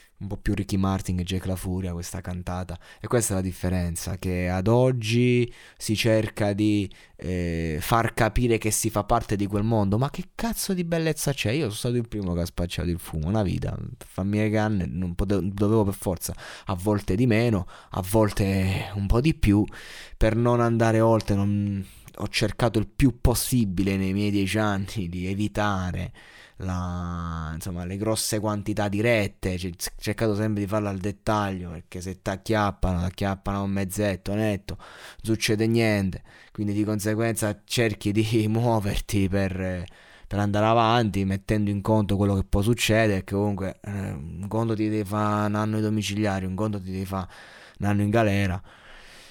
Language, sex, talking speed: Italian, male, 175 wpm